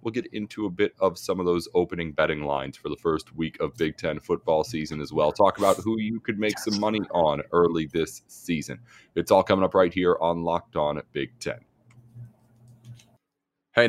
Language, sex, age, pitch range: English, male, 30-49, 85-115 Hz